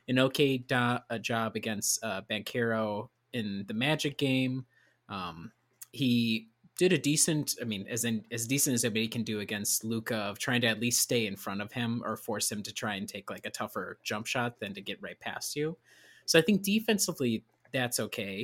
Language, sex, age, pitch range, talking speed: English, male, 20-39, 105-125 Hz, 200 wpm